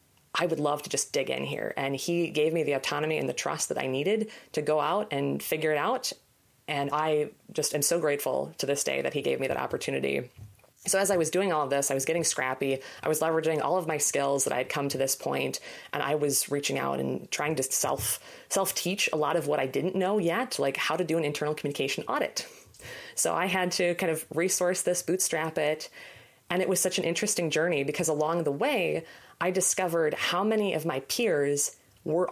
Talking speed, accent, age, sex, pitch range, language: 225 wpm, American, 20-39, female, 145-185 Hz, English